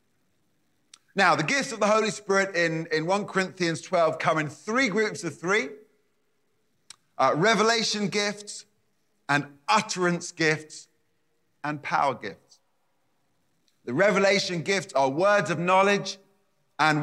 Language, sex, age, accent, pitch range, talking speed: English, male, 30-49, British, 145-200 Hz, 125 wpm